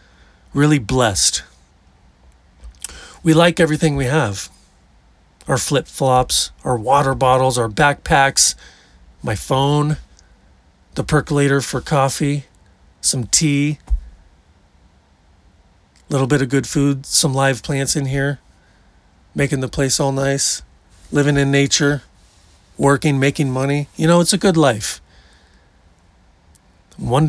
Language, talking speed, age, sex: English, 110 wpm, 40-59, male